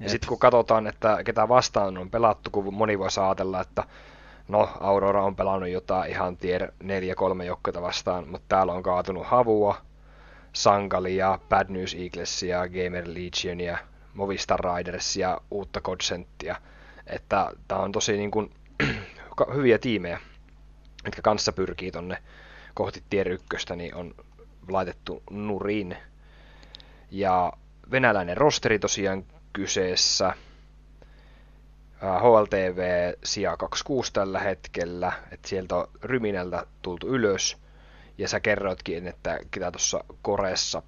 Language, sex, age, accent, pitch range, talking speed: Finnish, male, 30-49, native, 90-100 Hz, 115 wpm